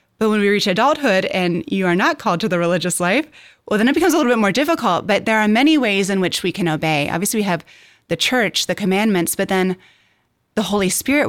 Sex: female